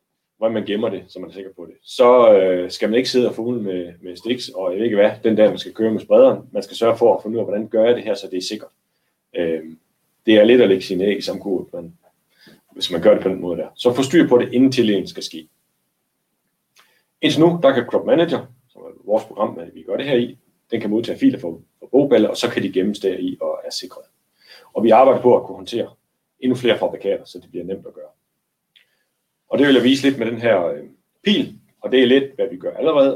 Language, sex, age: Danish, male, 30-49